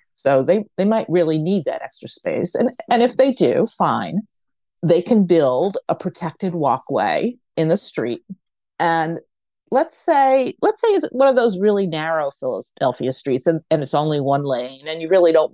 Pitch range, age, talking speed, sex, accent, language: 155-220 Hz, 40-59, 180 wpm, female, American, English